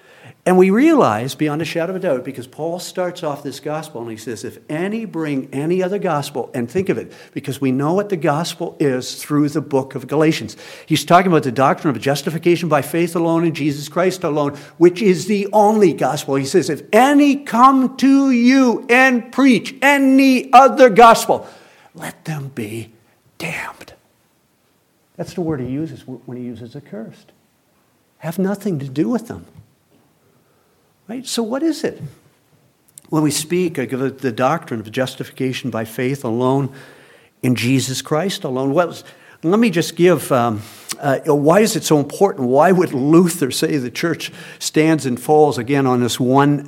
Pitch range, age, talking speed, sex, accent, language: 130-180 Hz, 50-69, 175 wpm, male, American, English